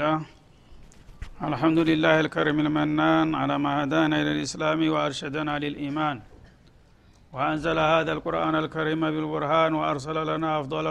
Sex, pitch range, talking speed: male, 155-160 Hz, 105 wpm